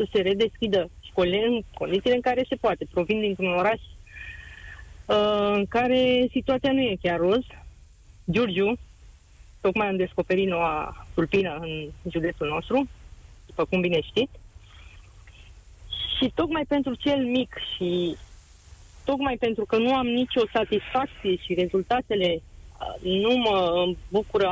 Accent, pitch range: native, 170-230 Hz